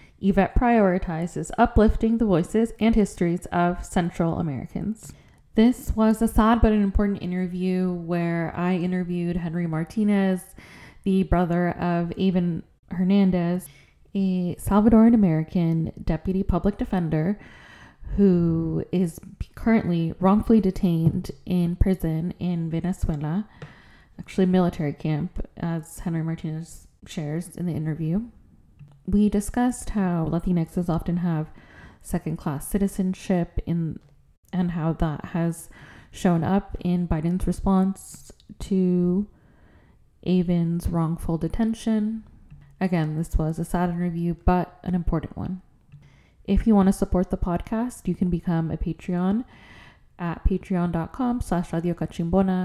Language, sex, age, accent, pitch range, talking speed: English, female, 10-29, American, 170-195 Hz, 115 wpm